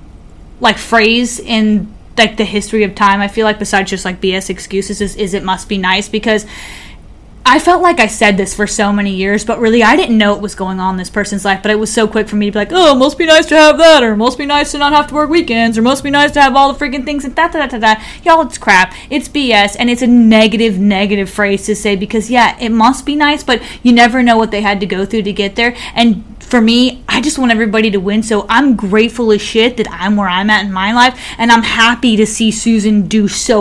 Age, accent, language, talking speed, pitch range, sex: 20-39, American, English, 275 wpm, 200-235 Hz, female